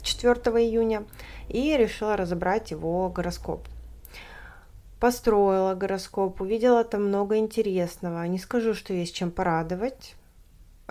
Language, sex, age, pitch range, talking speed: Russian, female, 20-39, 180-220 Hz, 105 wpm